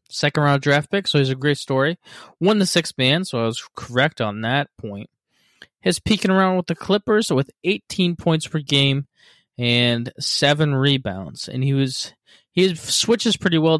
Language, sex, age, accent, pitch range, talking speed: English, male, 20-39, American, 120-155 Hz, 185 wpm